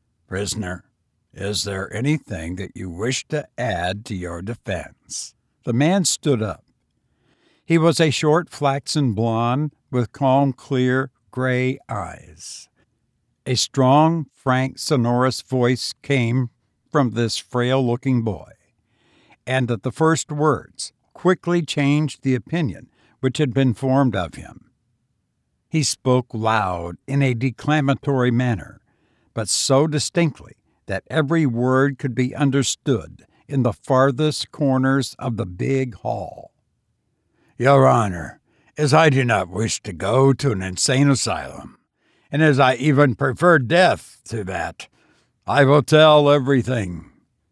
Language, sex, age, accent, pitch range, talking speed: English, male, 60-79, American, 115-145 Hz, 130 wpm